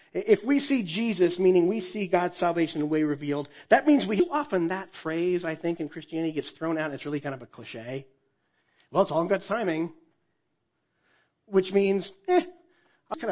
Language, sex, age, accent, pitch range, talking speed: English, male, 40-59, American, 150-225 Hz, 205 wpm